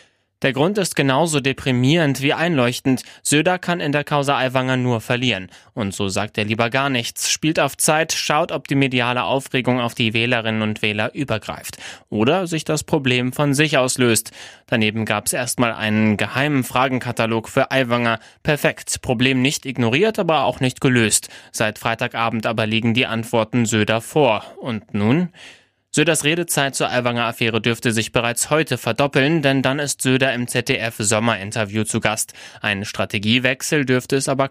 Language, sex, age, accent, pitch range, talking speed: German, male, 20-39, German, 115-140 Hz, 160 wpm